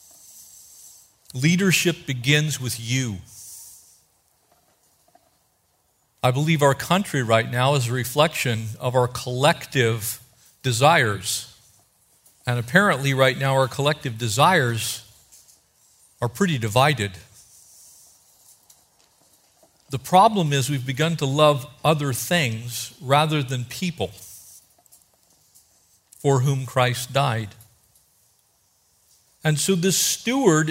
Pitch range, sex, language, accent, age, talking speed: 115-160 Hz, male, English, American, 50-69, 90 wpm